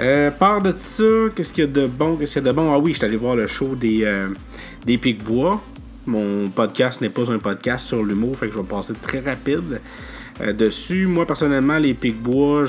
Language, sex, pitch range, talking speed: French, male, 105-130 Hz, 215 wpm